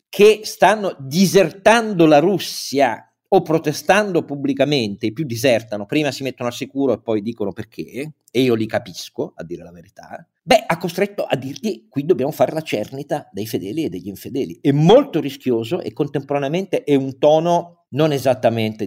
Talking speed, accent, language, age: 170 wpm, native, Italian, 50-69